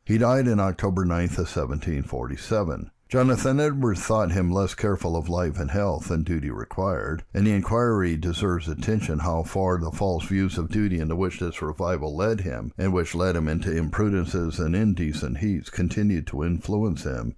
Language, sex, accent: English, male, American